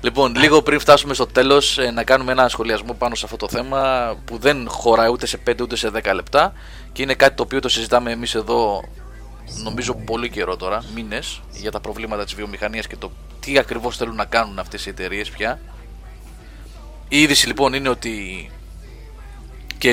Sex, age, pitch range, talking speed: male, 20-39, 100-130 Hz, 185 wpm